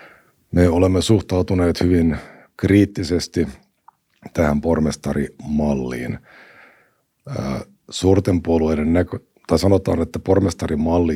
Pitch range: 70-90 Hz